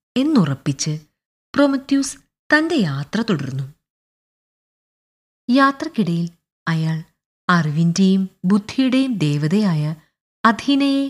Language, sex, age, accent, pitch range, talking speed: Malayalam, female, 30-49, native, 160-260 Hz, 60 wpm